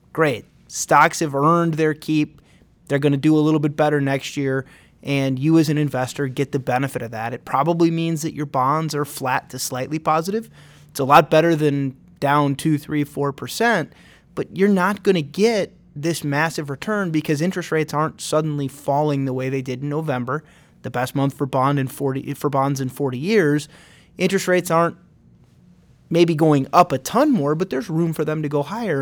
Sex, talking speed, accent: male, 200 wpm, American